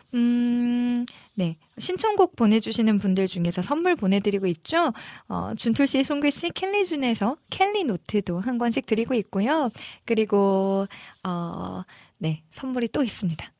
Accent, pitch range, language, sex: native, 180-245 Hz, Korean, female